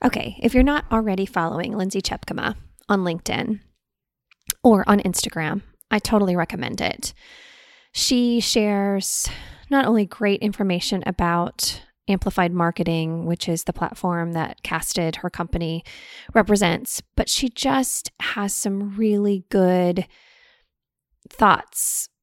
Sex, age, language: female, 20-39, English